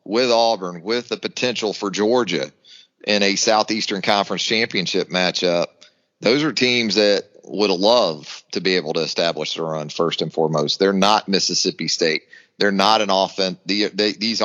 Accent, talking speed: American, 160 wpm